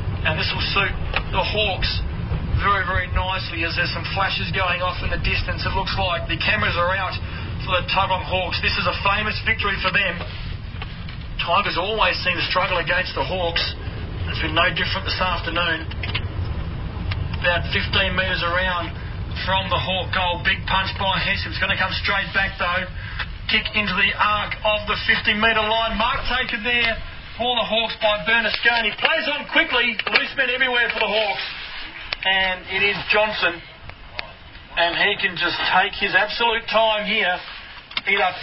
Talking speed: 170 wpm